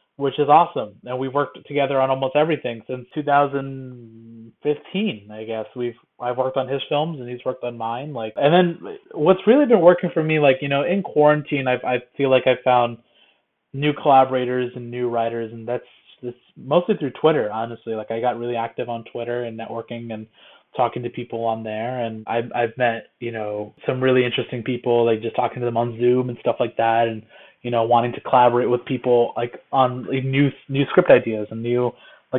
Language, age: English, 20-39